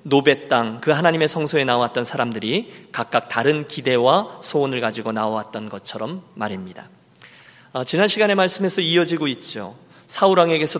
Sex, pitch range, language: male, 130-190 Hz, Korean